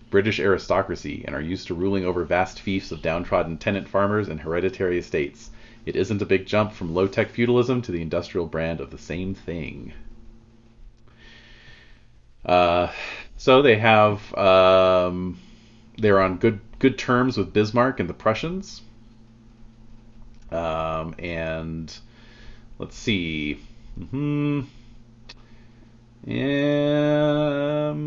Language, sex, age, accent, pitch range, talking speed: English, male, 40-59, American, 90-115 Hz, 115 wpm